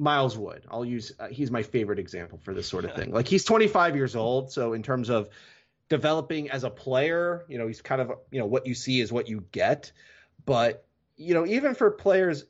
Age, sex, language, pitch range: 30-49, male, English, 115-150 Hz